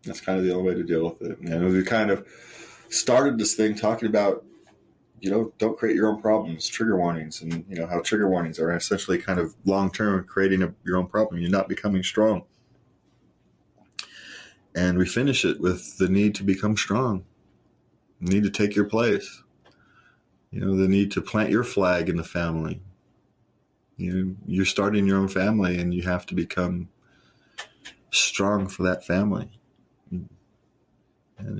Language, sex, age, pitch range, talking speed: English, male, 30-49, 90-105 Hz, 165 wpm